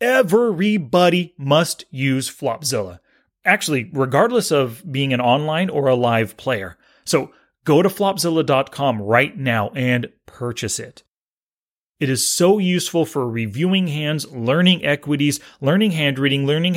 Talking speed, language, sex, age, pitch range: 130 wpm, English, male, 30-49, 115-160 Hz